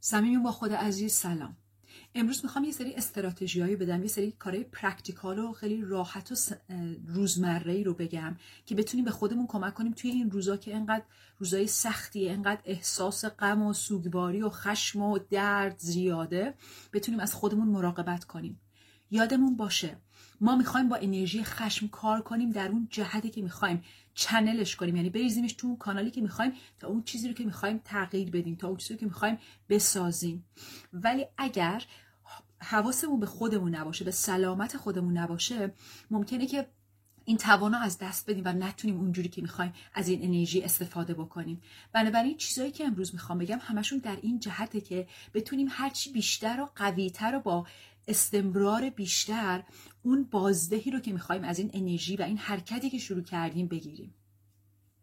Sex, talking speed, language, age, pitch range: female, 160 wpm, Persian, 30-49, 180-225 Hz